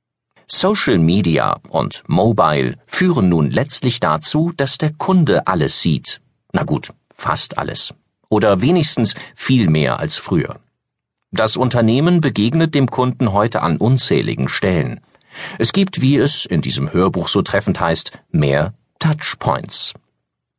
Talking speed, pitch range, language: 130 wpm, 90-145 Hz, German